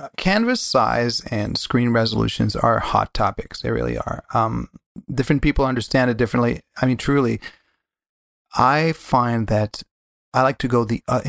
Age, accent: 30-49, American